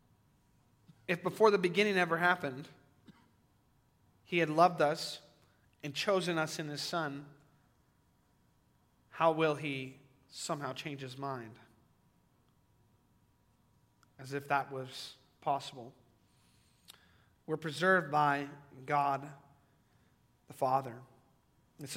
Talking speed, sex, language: 95 wpm, male, English